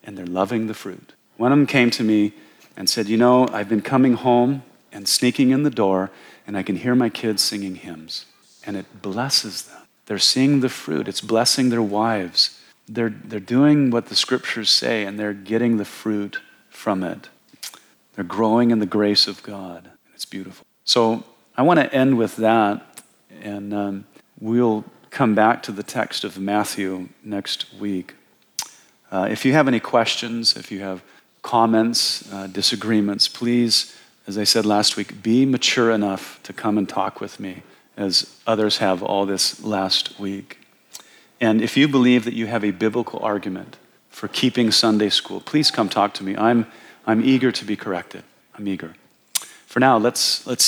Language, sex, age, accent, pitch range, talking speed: English, male, 40-59, American, 100-120 Hz, 180 wpm